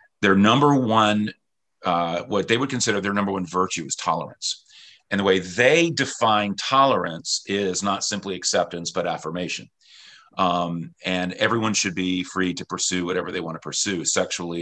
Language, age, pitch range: English, 40-59, 90-105 Hz